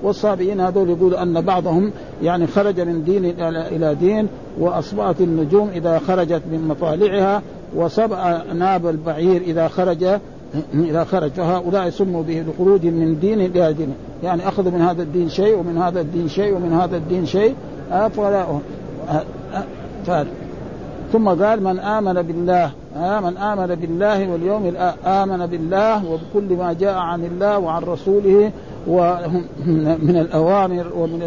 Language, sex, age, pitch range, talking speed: Arabic, male, 60-79, 170-200 Hz, 125 wpm